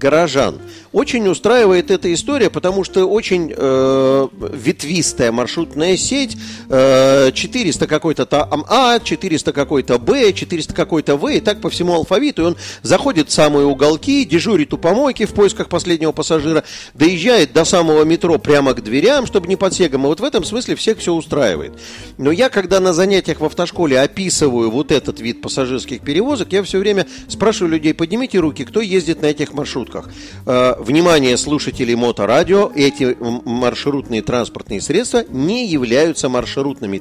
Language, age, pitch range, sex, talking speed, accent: Russian, 40-59, 130-190 Hz, male, 150 wpm, native